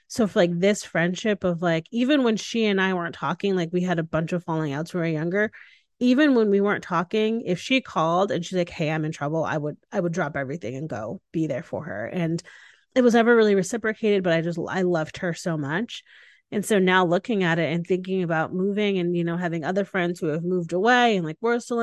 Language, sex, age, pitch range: English, female, 30-49, 165-205 Hz